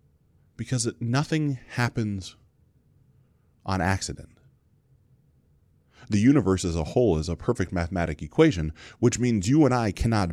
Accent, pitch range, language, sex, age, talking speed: American, 85-120 Hz, English, male, 30-49, 120 wpm